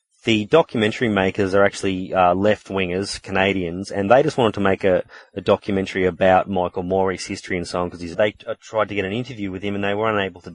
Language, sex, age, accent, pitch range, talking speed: English, male, 30-49, Australian, 90-105 Hz, 230 wpm